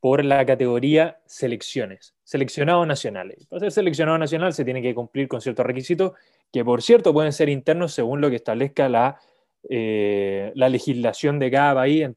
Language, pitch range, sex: Spanish, 120-160 Hz, male